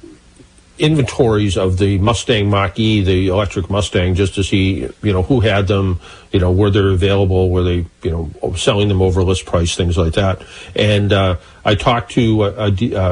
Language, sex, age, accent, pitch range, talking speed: English, male, 50-69, American, 95-120 Hz, 185 wpm